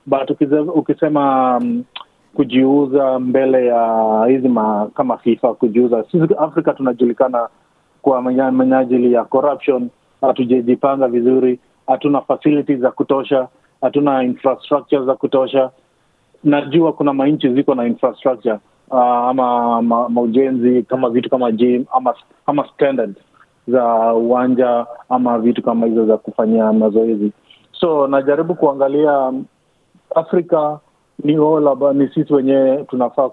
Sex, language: male, Swahili